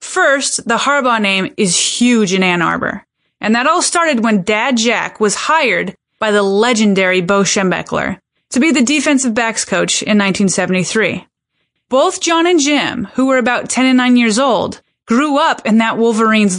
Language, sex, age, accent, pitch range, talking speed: English, female, 30-49, American, 210-285 Hz, 175 wpm